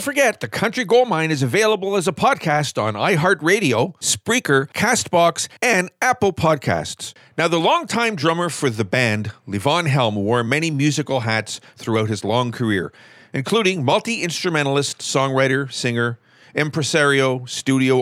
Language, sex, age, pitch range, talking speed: English, male, 50-69, 120-170 Hz, 135 wpm